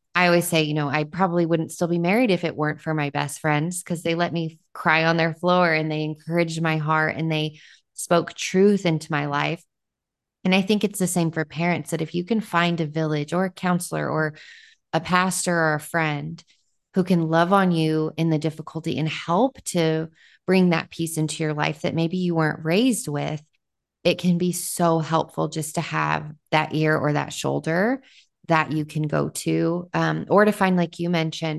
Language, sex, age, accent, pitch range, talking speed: English, female, 20-39, American, 155-175 Hz, 210 wpm